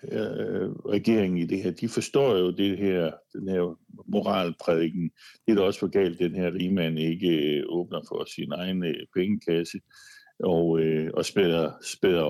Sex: male